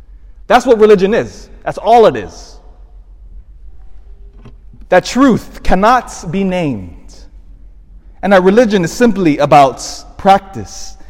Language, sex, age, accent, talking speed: English, male, 30-49, American, 110 wpm